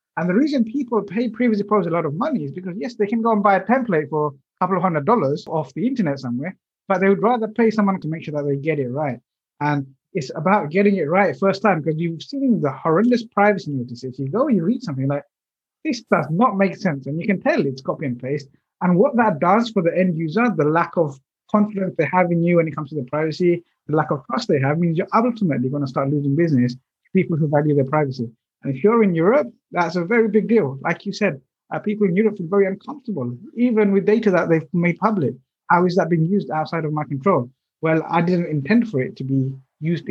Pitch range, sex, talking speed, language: 150-210 Hz, male, 250 wpm, English